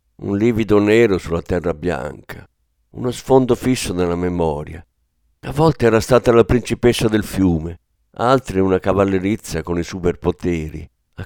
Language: Italian